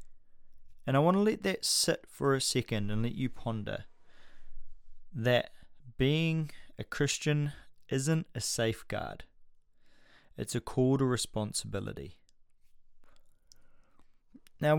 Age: 20-39